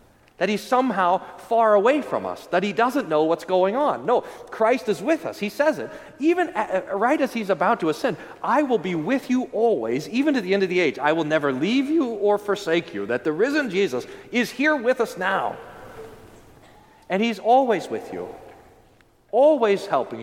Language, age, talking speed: English, 40-59, 195 wpm